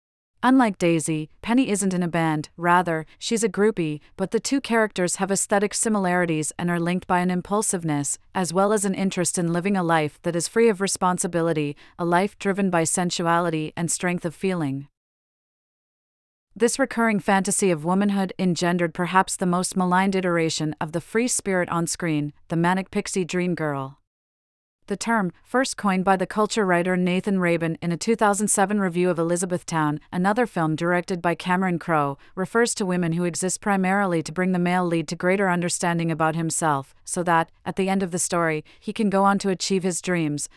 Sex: female